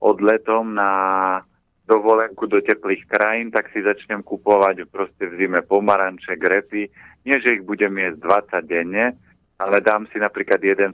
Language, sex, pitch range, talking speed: Slovak, male, 95-105 Hz, 150 wpm